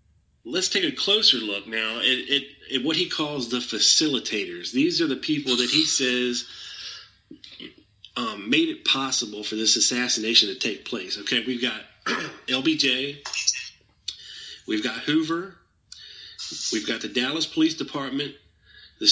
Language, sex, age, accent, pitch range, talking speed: English, male, 40-59, American, 115-150 Hz, 140 wpm